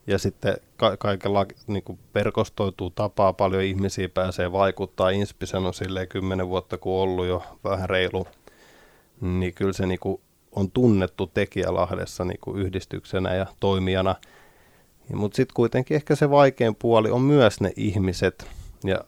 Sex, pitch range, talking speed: male, 95-110 Hz, 140 wpm